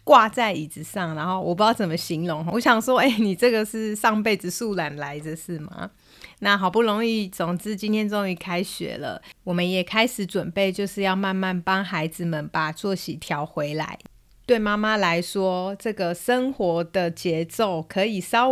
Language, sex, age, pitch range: Chinese, female, 30-49, 175-220 Hz